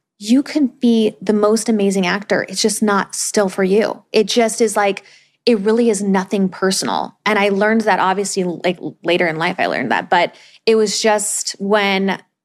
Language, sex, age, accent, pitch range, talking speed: English, female, 20-39, American, 185-235 Hz, 190 wpm